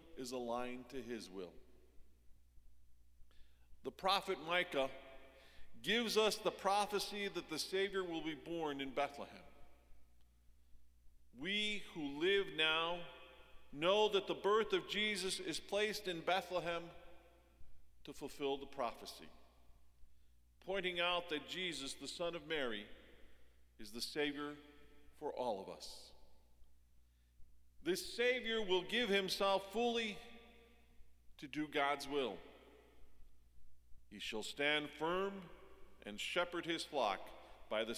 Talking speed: 115 wpm